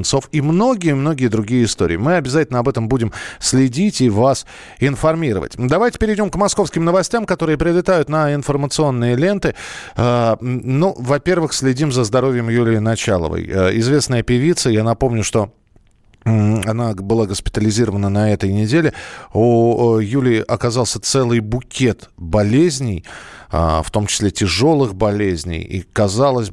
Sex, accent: male, native